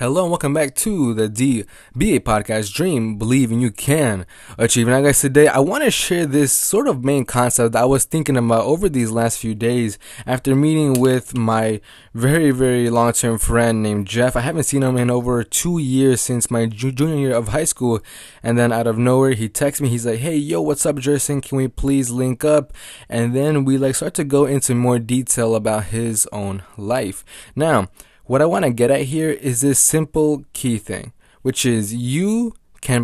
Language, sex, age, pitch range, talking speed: English, male, 20-39, 115-140 Hz, 205 wpm